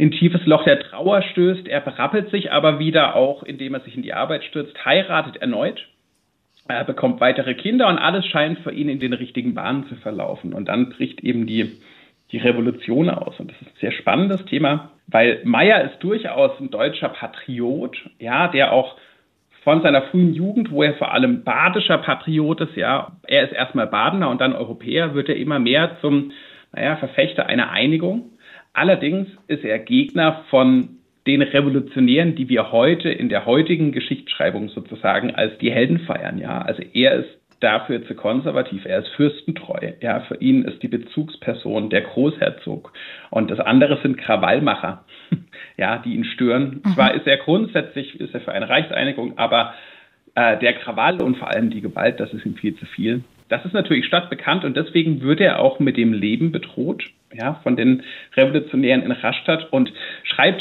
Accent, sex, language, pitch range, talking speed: German, male, German, 135-185 Hz, 175 wpm